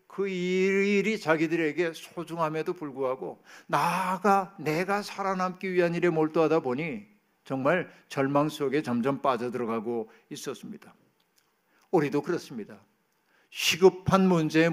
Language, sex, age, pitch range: Korean, male, 60-79, 145-185 Hz